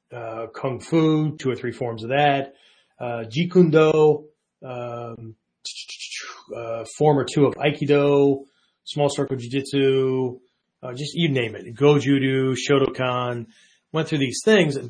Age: 30-49